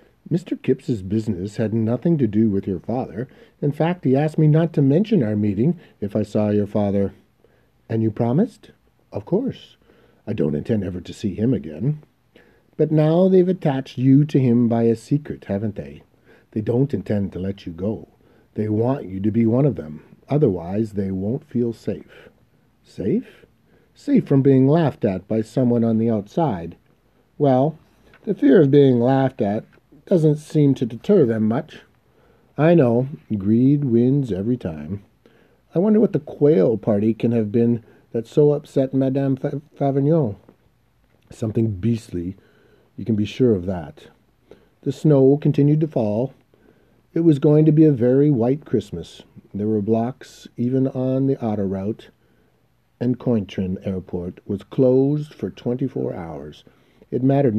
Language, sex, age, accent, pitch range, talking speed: English, male, 50-69, American, 110-145 Hz, 160 wpm